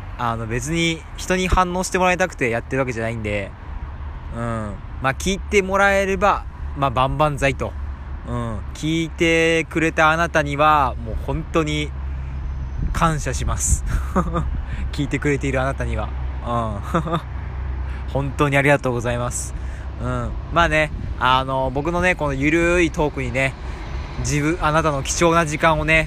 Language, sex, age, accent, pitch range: Japanese, male, 20-39, native, 90-145 Hz